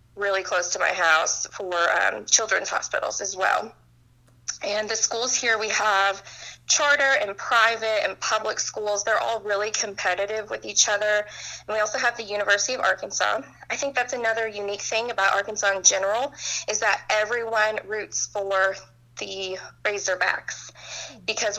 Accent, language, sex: American, English, female